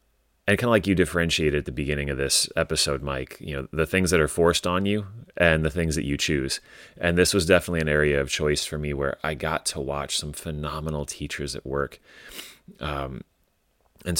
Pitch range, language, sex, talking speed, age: 70-80 Hz, English, male, 210 wpm, 30-49